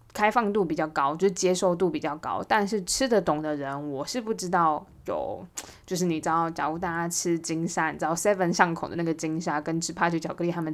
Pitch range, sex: 160-205 Hz, female